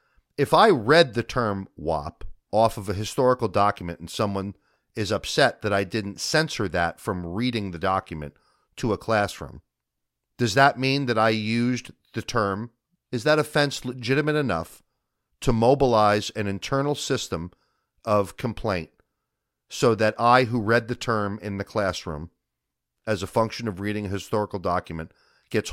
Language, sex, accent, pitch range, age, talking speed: English, male, American, 95-135 Hz, 40-59, 155 wpm